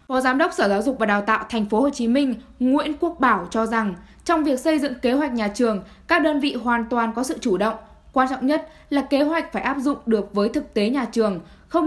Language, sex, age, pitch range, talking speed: Vietnamese, female, 10-29, 220-275 Hz, 265 wpm